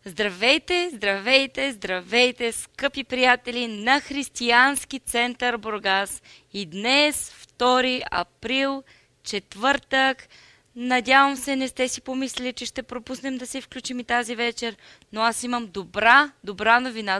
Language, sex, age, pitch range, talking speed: Bulgarian, female, 20-39, 220-265 Hz, 120 wpm